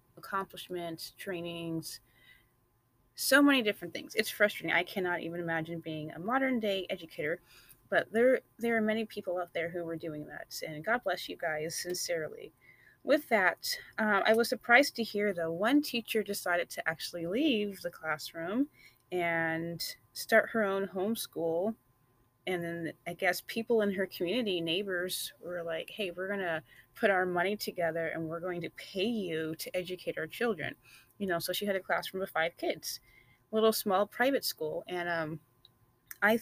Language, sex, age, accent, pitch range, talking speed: English, female, 30-49, American, 165-215 Hz, 170 wpm